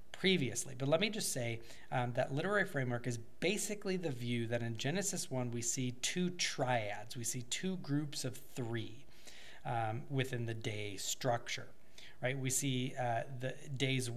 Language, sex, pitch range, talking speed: English, male, 115-135 Hz, 165 wpm